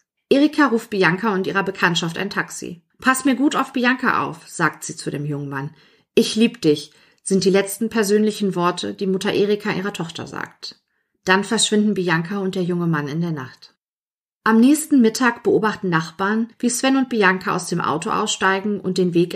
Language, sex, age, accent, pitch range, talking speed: German, female, 40-59, German, 185-225 Hz, 185 wpm